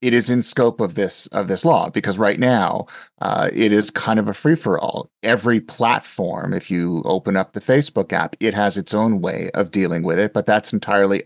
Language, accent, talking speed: English, American, 215 wpm